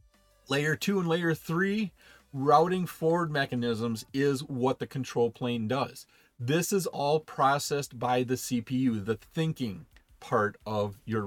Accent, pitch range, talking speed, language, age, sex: American, 120-165 Hz, 140 wpm, English, 40-59, male